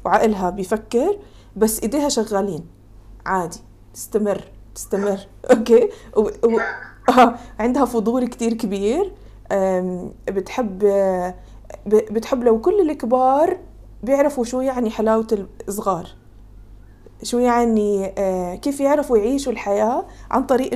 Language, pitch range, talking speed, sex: English, 190-240 Hz, 95 wpm, female